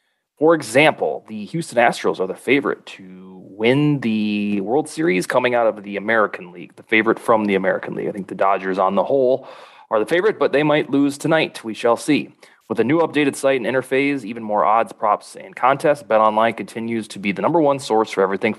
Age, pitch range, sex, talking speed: 20-39, 105-135 Hz, male, 215 wpm